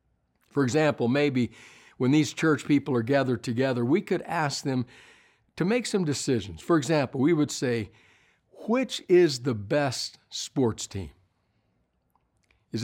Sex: male